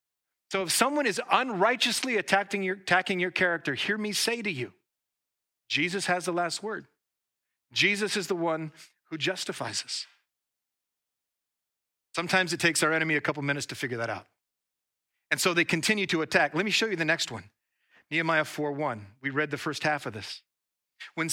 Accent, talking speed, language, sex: American, 175 wpm, English, male